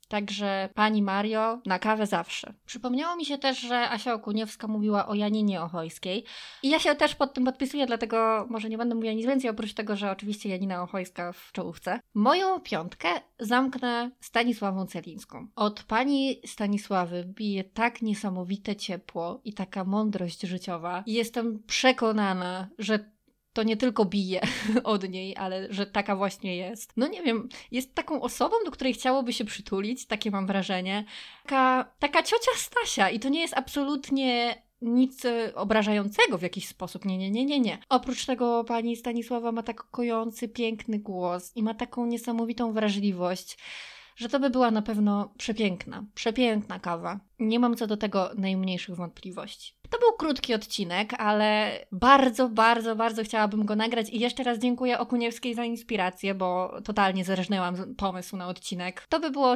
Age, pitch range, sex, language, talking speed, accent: 20-39, 195-245 Hz, female, Polish, 160 wpm, native